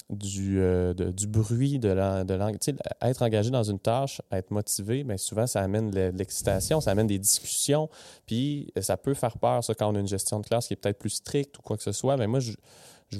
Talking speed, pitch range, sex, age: 240 wpm, 95-115 Hz, male, 20-39